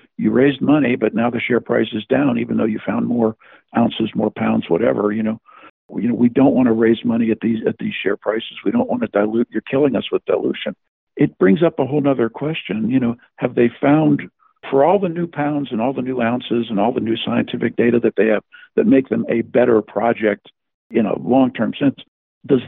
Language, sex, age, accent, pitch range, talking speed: English, male, 60-79, American, 115-140 Hz, 240 wpm